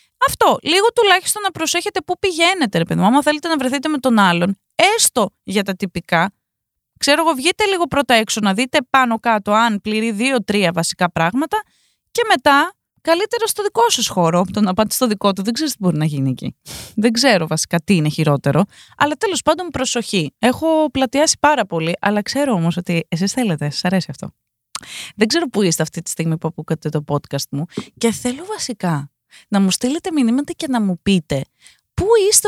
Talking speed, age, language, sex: 190 wpm, 20-39, Greek, female